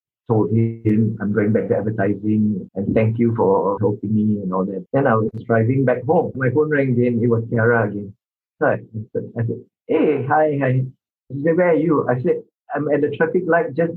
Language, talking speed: English, 210 wpm